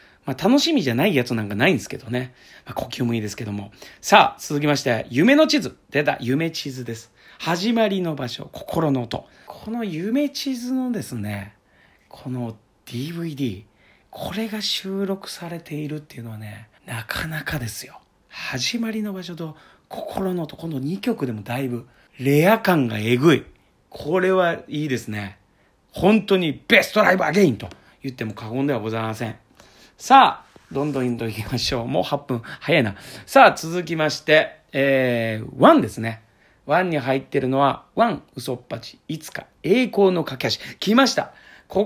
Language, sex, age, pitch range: Japanese, male, 40-59, 115-165 Hz